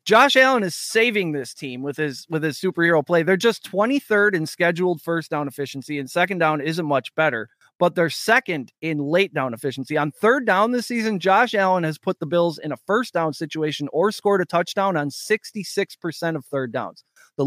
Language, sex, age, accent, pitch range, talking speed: English, male, 30-49, American, 140-200 Hz, 205 wpm